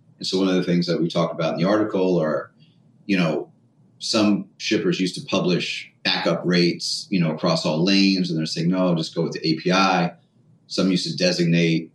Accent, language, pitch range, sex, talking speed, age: American, English, 80-90 Hz, male, 205 wpm, 30-49